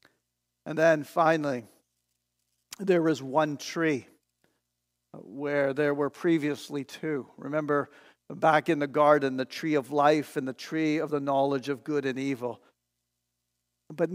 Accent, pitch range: American, 140-175 Hz